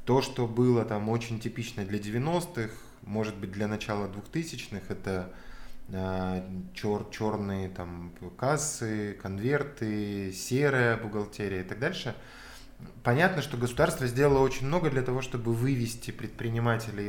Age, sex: 20-39, male